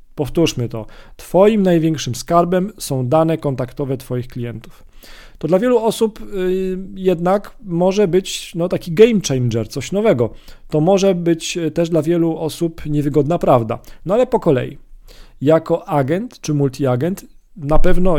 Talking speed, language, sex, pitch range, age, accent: 135 wpm, Polish, male, 140-175 Hz, 40-59, native